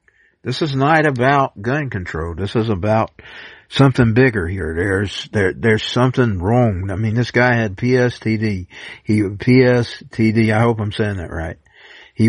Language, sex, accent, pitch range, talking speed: English, male, American, 90-115 Hz, 155 wpm